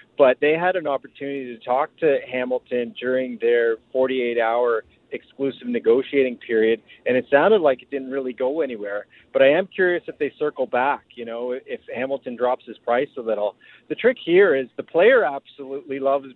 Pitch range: 125-155 Hz